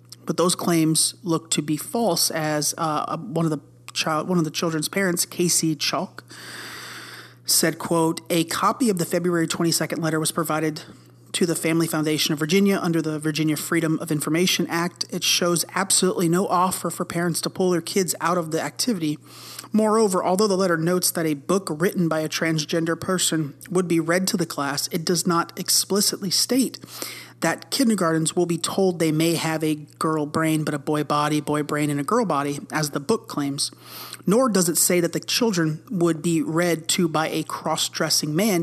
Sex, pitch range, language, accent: male, 155-180 Hz, English, American